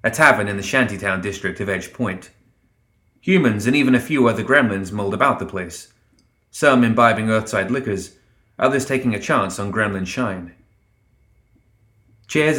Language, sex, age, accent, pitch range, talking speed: English, male, 30-49, British, 95-125 Hz, 155 wpm